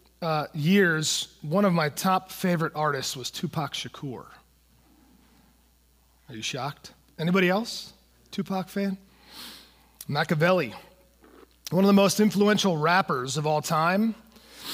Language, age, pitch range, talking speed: English, 30-49, 155-205 Hz, 115 wpm